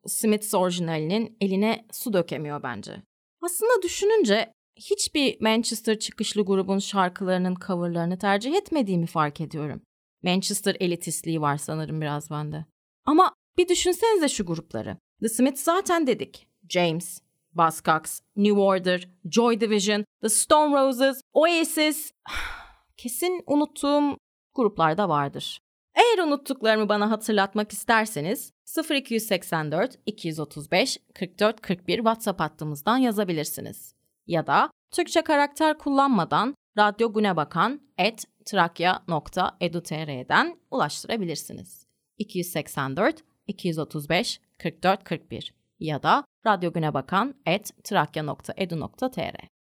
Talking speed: 85 wpm